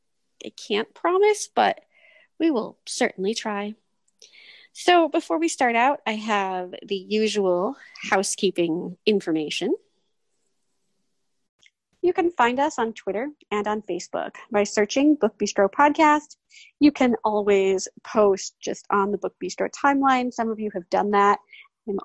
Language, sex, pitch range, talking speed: English, female, 200-290 Hz, 135 wpm